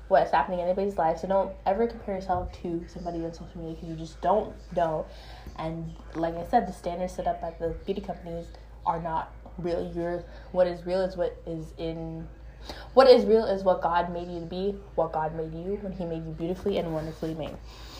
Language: English